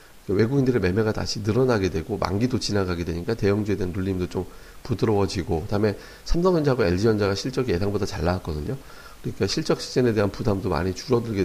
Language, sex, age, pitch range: Korean, male, 40-59, 95-120 Hz